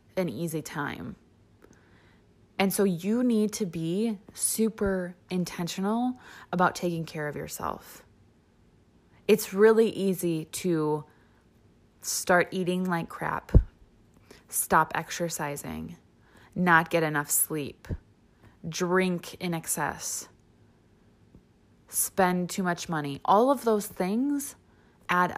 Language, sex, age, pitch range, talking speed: English, female, 20-39, 165-210 Hz, 100 wpm